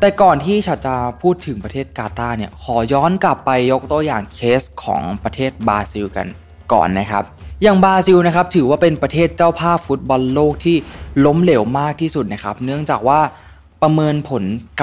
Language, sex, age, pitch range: Thai, male, 20-39, 105-145 Hz